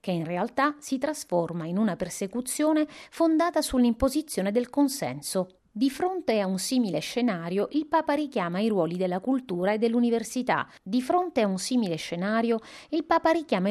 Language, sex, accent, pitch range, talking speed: Italian, female, native, 175-270 Hz, 160 wpm